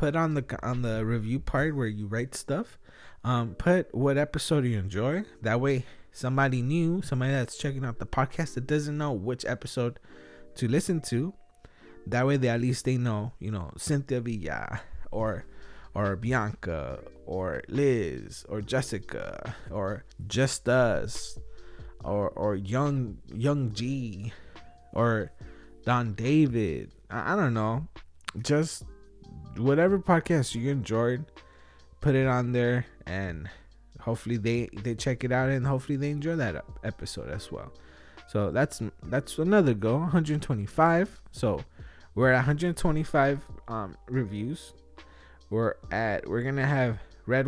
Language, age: English, 20-39